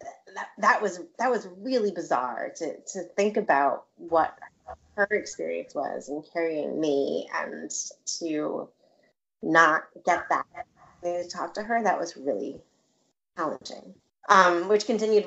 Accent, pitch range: American, 150-210 Hz